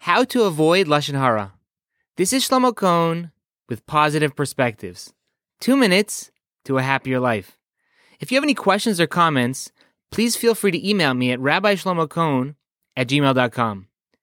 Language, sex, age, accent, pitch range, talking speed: English, male, 20-39, American, 145-210 Hz, 150 wpm